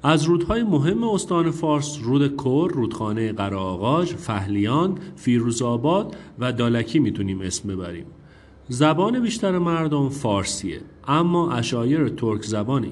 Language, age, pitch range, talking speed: Persian, 40-59, 110-160 Hz, 110 wpm